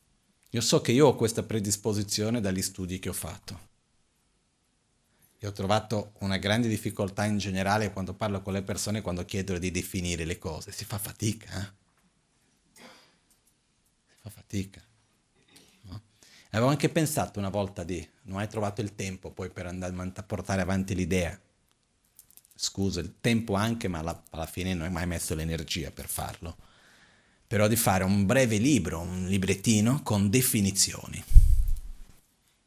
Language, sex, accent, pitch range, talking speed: Italian, male, native, 95-115 Hz, 150 wpm